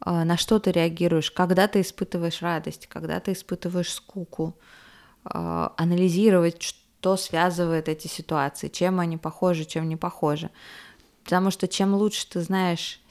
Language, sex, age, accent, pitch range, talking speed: Russian, female, 20-39, native, 165-195 Hz, 135 wpm